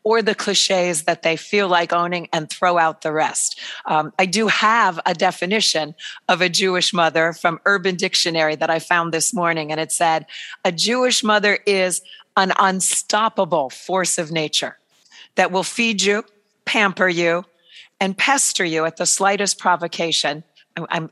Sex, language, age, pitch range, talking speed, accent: female, English, 40-59, 165-200 Hz, 160 wpm, American